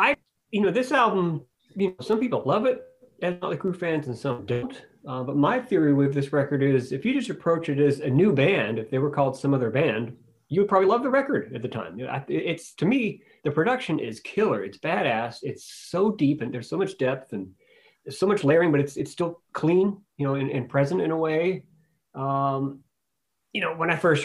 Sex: male